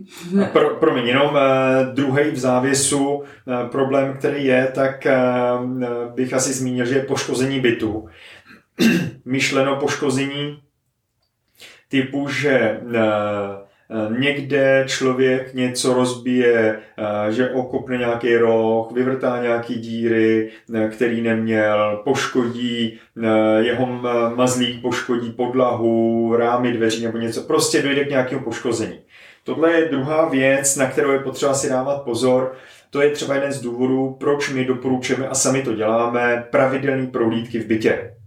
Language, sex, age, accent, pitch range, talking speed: Czech, male, 30-49, native, 120-140 Hz, 120 wpm